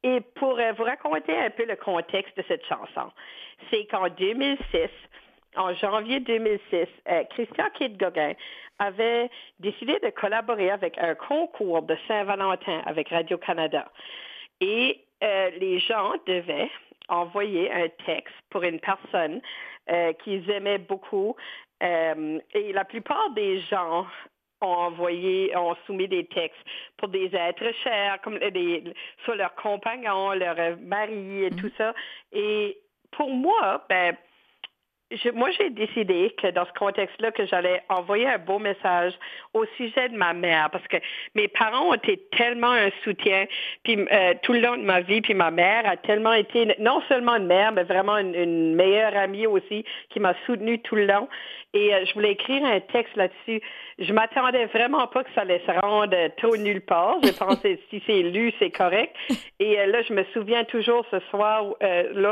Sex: female